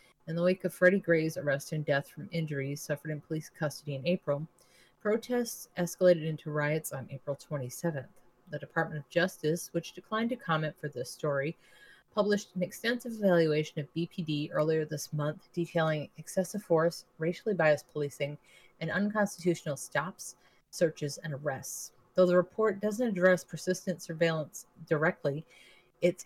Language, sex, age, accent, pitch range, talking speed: English, female, 30-49, American, 150-180 Hz, 150 wpm